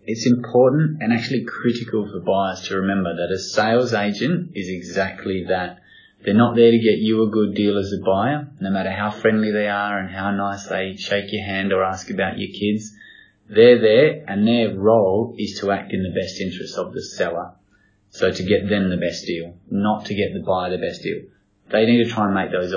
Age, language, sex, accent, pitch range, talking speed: 20-39, English, male, Australian, 95-110 Hz, 220 wpm